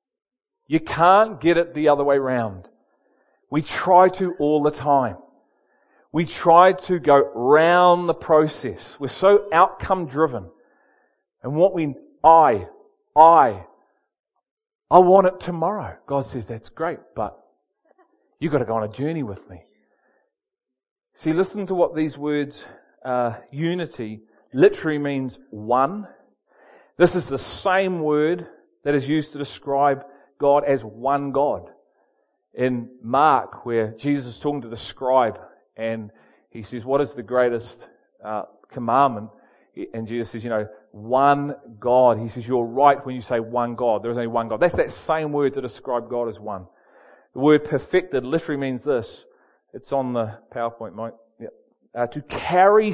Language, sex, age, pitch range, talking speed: English, male, 40-59, 120-170 Hz, 150 wpm